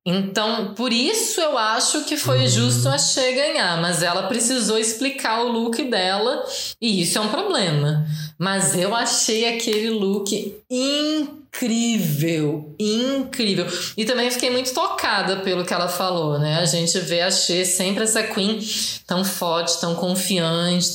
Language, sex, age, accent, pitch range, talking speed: Portuguese, female, 20-39, Brazilian, 175-235 Hz, 150 wpm